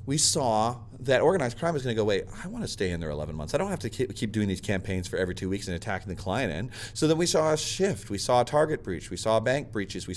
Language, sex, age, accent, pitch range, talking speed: English, male, 40-59, American, 100-125 Hz, 300 wpm